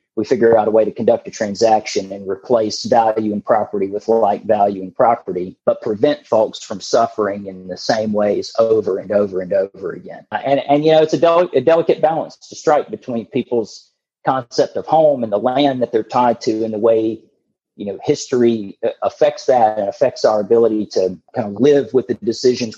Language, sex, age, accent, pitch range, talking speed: English, male, 40-59, American, 105-140 Hz, 205 wpm